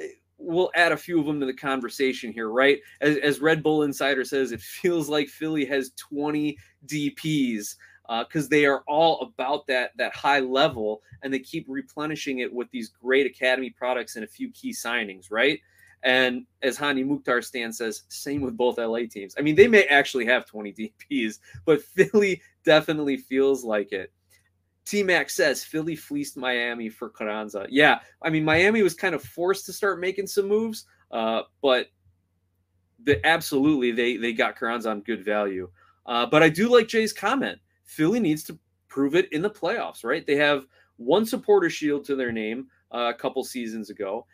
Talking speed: 185 wpm